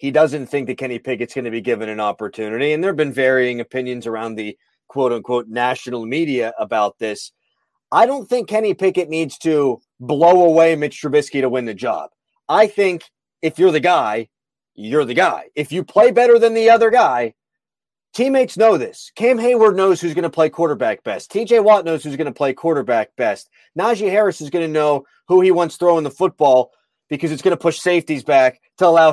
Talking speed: 210 wpm